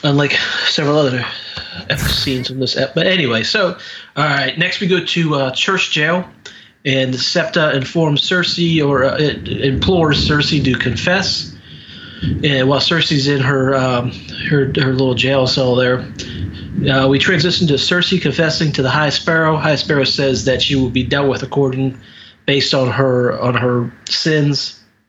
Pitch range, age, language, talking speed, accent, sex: 130-155 Hz, 30-49, English, 165 wpm, American, male